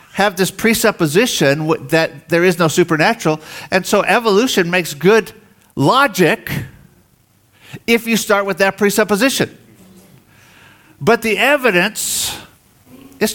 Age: 50-69